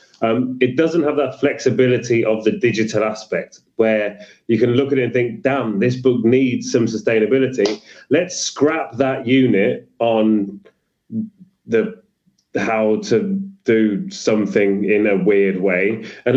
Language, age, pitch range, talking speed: English, 30-49, 115-145 Hz, 145 wpm